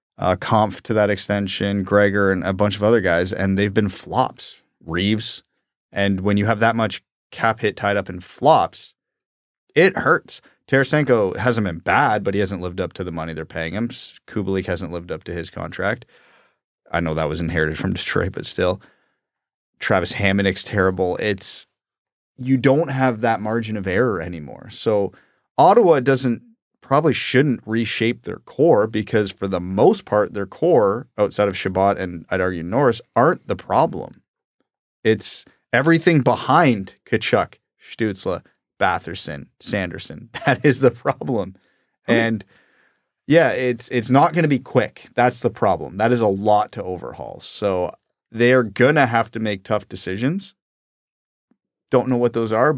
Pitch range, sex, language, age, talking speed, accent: 95-120 Hz, male, English, 30-49, 165 wpm, American